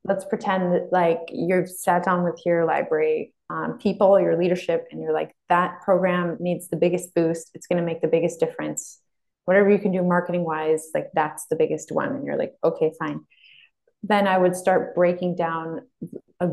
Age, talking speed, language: 20-39, 190 wpm, English